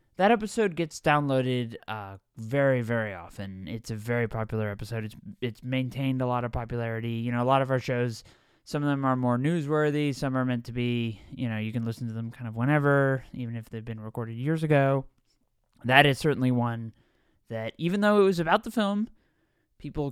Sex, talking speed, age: male, 205 wpm, 20-39